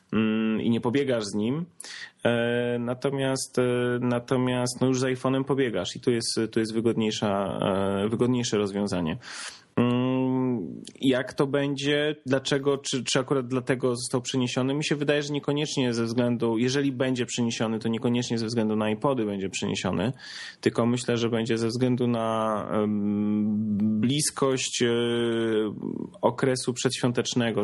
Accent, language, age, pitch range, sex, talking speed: native, Polish, 20-39, 110-130 Hz, male, 125 wpm